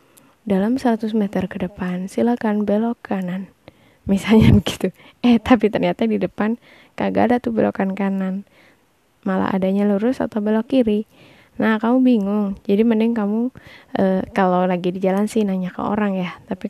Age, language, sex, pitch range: 20-39, Indonesian, female, 195-235 Hz